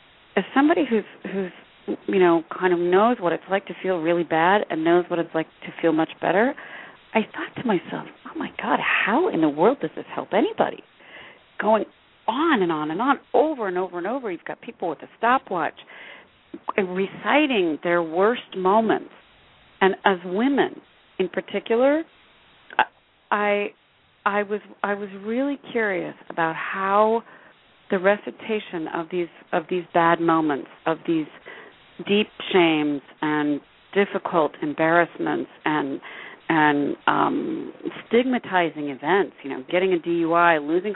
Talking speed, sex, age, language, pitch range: 150 wpm, female, 40-59, English, 165-215 Hz